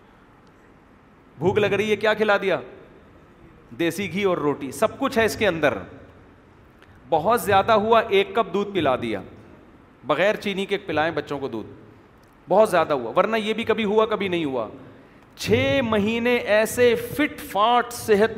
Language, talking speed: Urdu, 160 wpm